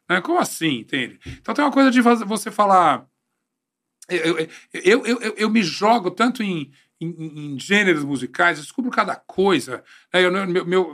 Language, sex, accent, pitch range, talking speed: Portuguese, male, Brazilian, 150-245 Hz, 170 wpm